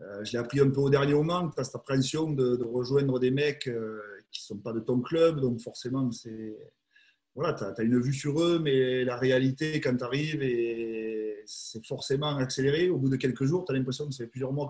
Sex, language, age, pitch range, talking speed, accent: male, French, 30-49, 115-140 Hz, 235 wpm, French